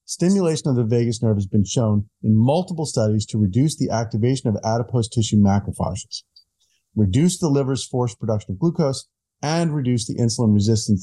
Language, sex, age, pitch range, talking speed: English, male, 40-59, 100-130 Hz, 170 wpm